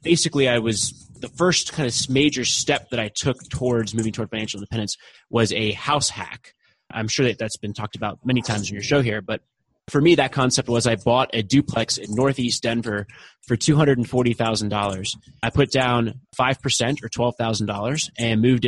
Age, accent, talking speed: 20-39, American, 210 wpm